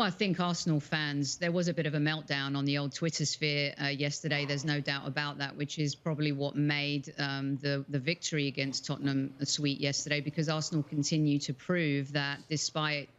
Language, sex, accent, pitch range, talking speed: English, female, British, 145-165 Hz, 200 wpm